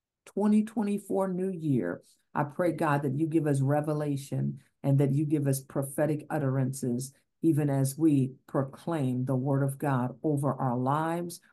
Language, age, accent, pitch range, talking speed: English, 50-69, American, 140-185 Hz, 150 wpm